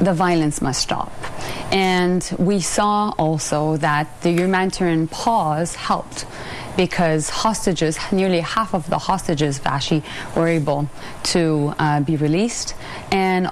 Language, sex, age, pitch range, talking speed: English, female, 30-49, 155-185 Hz, 125 wpm